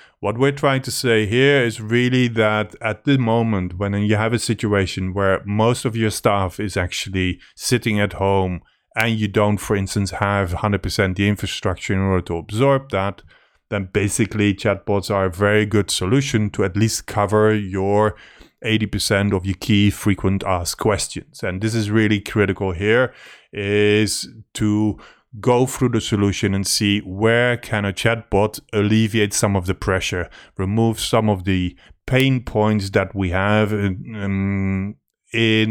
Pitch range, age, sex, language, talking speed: 95-110 Hz, 30-49, male, English, 160 wpm